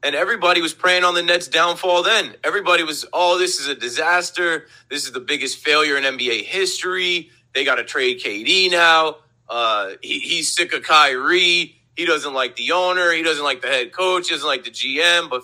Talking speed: 205 wpm